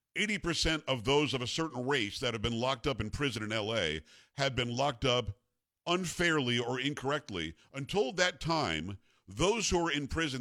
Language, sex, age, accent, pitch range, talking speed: English, male, 50-69, American, 110-140 Hz, 175 wpm